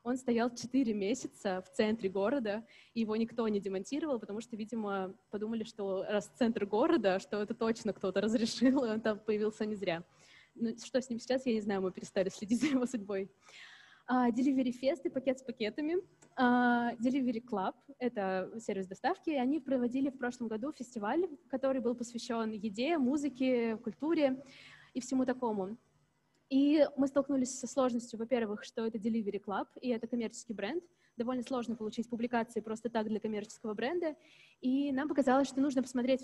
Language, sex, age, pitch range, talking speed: Russian, female, 20-39, 215-265 Hz, 170 wpm